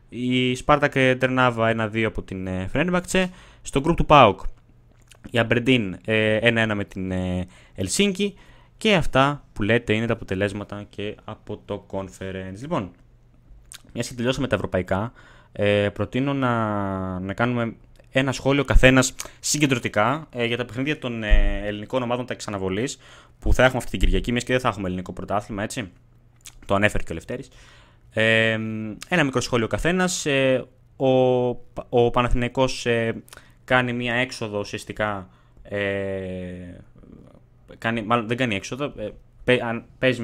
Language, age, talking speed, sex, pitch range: Greek, 20-39, 125 wpm, male, 100-125 Hz